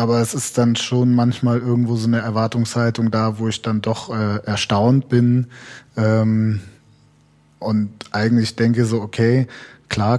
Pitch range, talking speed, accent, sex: 105-120 Hz, 145 wpm, German, male